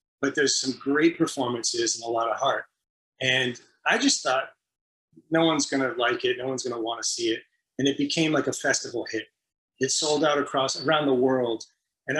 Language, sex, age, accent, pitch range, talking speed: English, male, 30-49, American, 125-170 Hz, 195 wpm